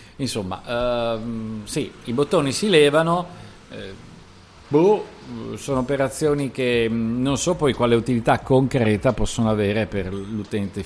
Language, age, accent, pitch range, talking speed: Italian, 50-69, native, 100-135 Hz, 120 wpm